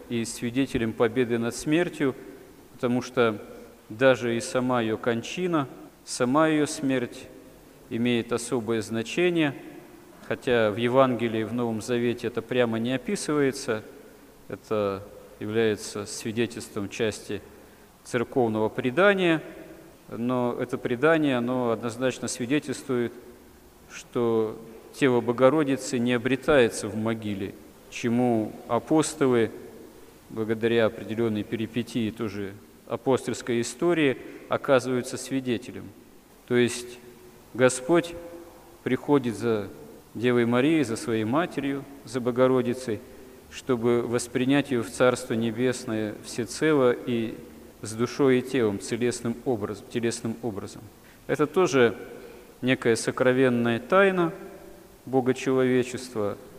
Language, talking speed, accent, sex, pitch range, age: Russian, 95 wpm, native, male, 115-130 Hz, 40-59